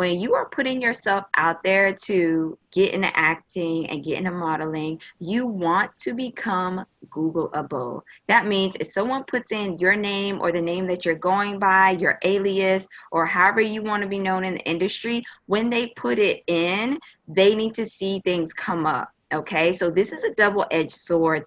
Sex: female